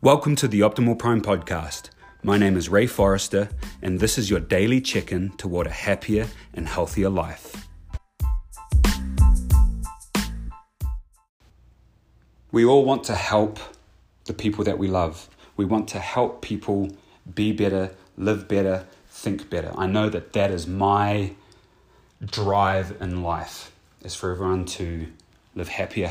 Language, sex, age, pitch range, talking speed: English, male, 30-49, 90-105 Hz, 135 wpm